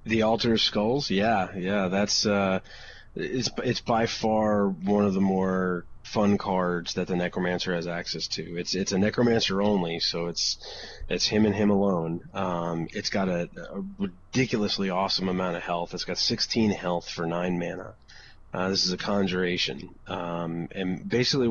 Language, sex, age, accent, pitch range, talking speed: English, male, 30-49, American, 90-105 Hz, 170 wpm